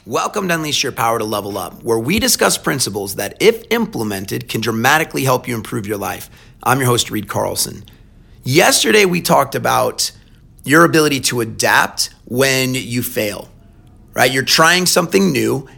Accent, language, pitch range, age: American, English, 120-160 Hz, 30-49